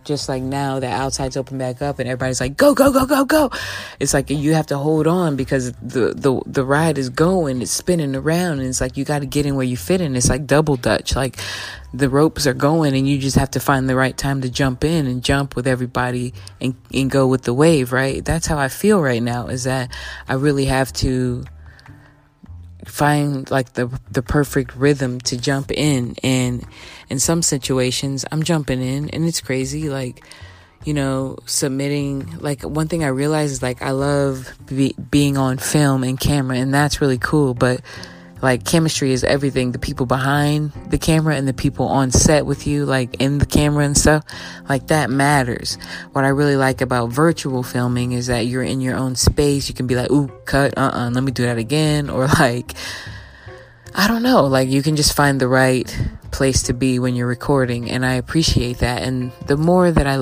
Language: English